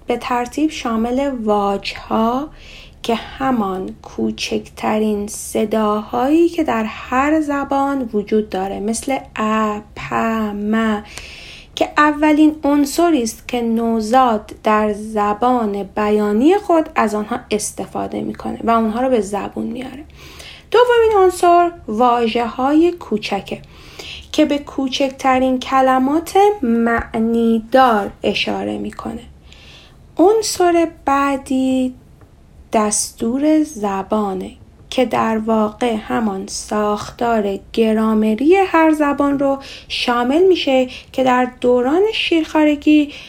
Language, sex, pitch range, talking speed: Persian, female, 215-285 Hz, 95 wpm